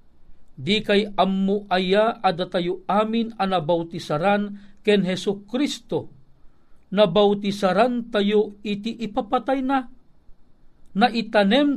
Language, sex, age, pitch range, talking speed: Filipino, male, 50-69, 195-235 Hz, 80 wpm